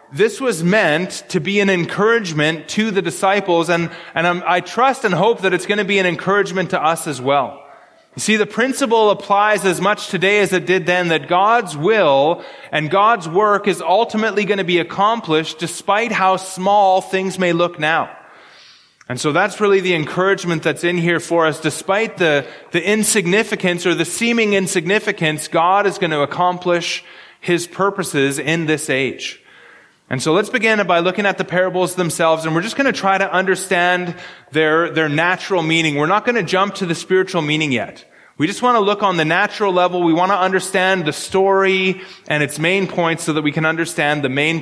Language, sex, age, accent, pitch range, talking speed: English, male, 30-49, American, 160-195 Hz, 195 wpm